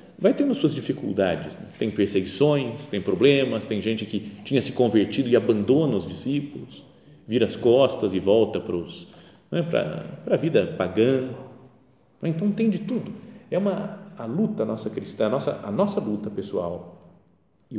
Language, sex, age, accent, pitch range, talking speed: Portuguese, male, 40-59, Brazilian, 105-165 Hz, 165 wpm